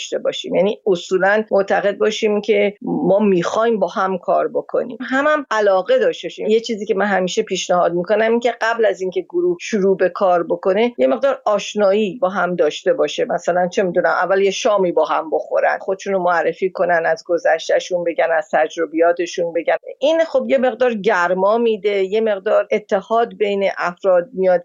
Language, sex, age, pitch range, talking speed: Persian, female, 50-69, 185-260 Hz, 175 wpm